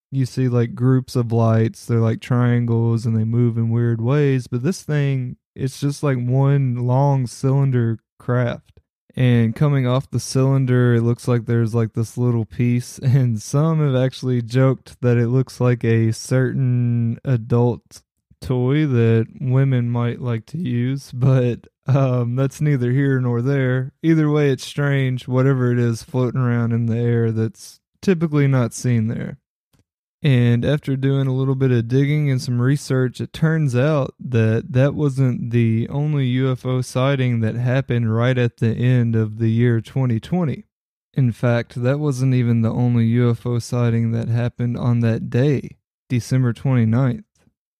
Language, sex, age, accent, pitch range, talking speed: English, male, 20-39, American, 115-135 Hz, 160 wpm